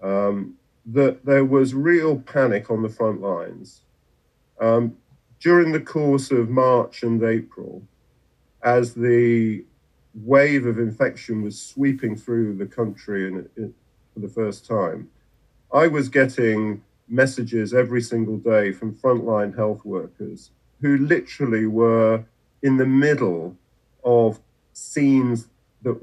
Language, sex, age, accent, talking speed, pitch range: English, male, 50-69, British, 120 wpm, 115-135 Hz